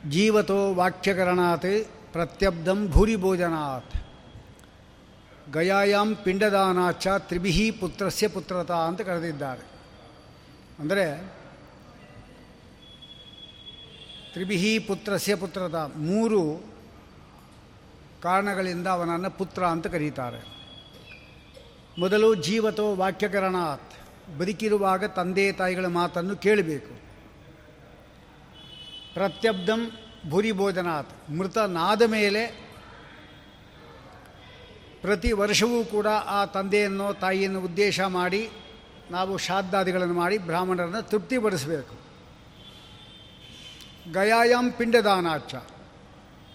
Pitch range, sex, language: 175-210 Hz, male, Kannada